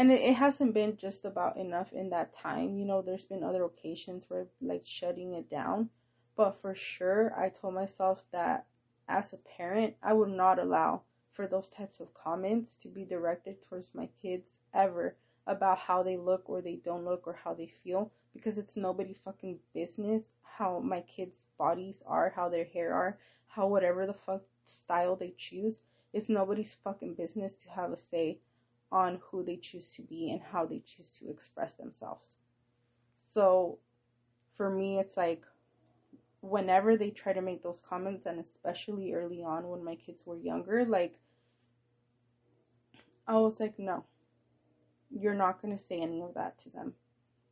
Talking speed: 175 wpm